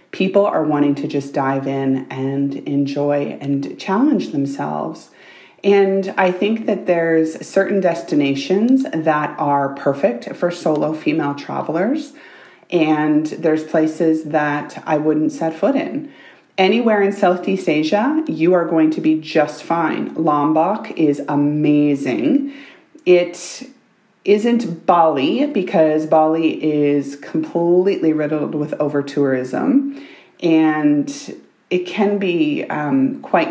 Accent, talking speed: American, 115 wpm